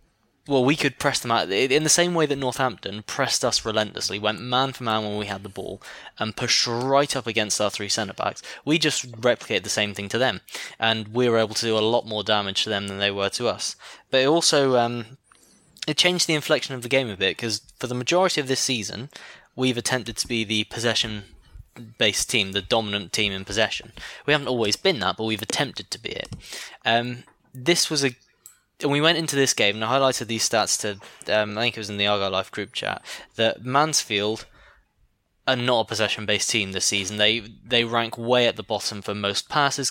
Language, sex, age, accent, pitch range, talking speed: English, male, 10-29, British, 105-130 Hz, 220 wpm